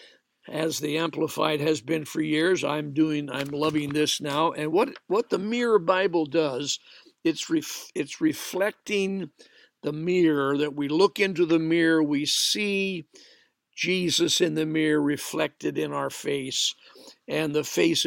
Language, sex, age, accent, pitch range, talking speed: English, male, 60-79, American, 145-175 Hz, 150 wpm